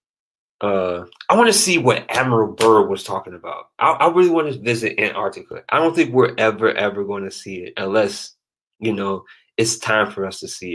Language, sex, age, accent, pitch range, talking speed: English, male, 20-39, American, 110-145 Hz, 200 wpm